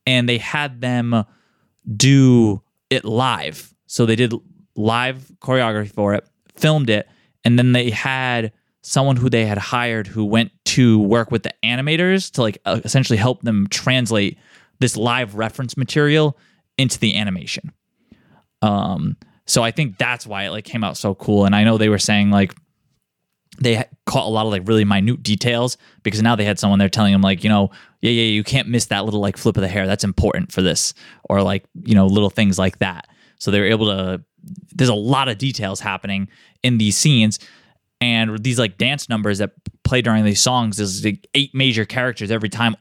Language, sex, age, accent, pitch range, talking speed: English, male, 20-39, American, 105-125 Hz, 195 wpm